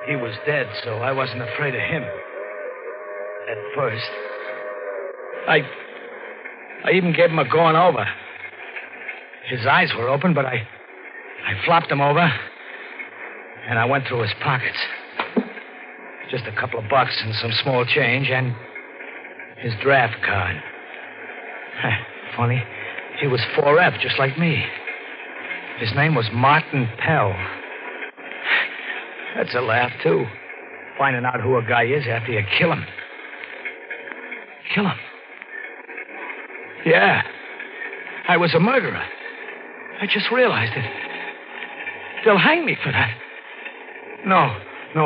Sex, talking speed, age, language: male, 125 wpm, 60-79, English